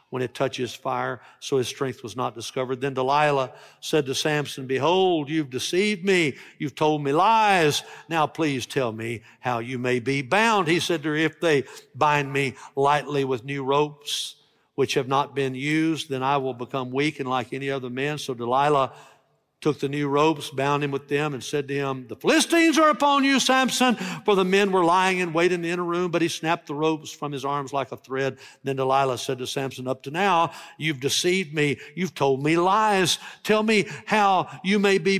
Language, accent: English, American